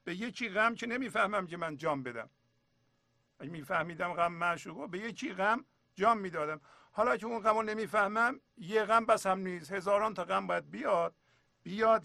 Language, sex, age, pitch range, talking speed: English, male, 50-69, 135-200 Hz, 170 wpm